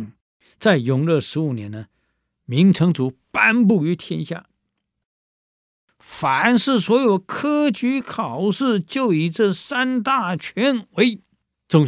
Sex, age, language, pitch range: male, 60-79, Chinese, 120-180 Hz